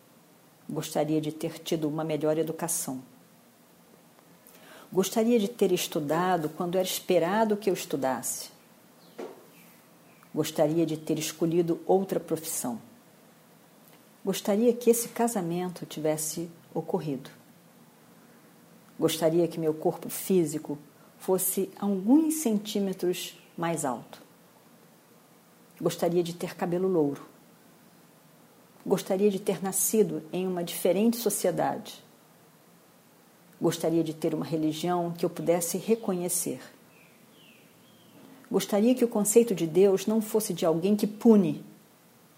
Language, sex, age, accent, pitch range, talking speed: Portuguese, female, 50-69, Brazilian, 155-200 Hz, 105 wpm